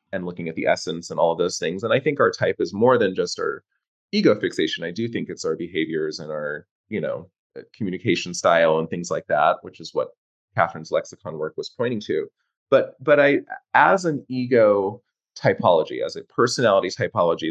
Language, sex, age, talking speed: English, male, 30-49, 200 wpm